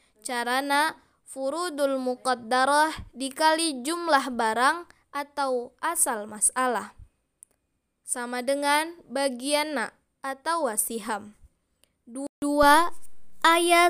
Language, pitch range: Indonesian, 250-315 Hz